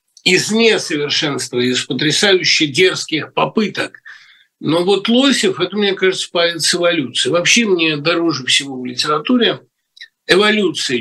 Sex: male